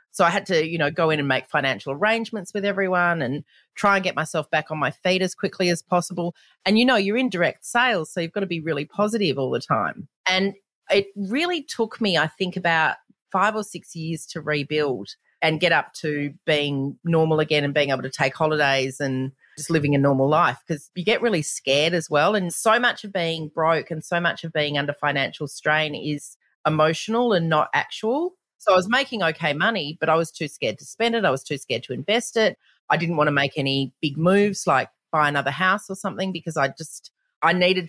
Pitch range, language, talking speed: 155-195 Hz, English, 225 wpm